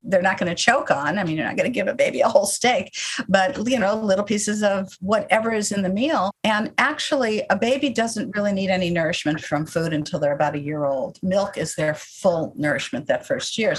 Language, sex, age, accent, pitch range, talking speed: English, female, 50-69, American, 180-225 Hz, 235 wpm